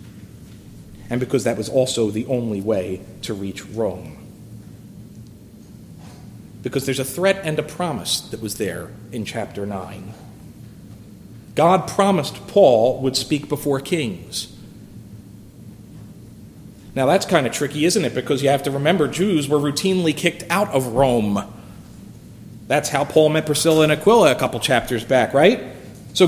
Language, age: English, 40-59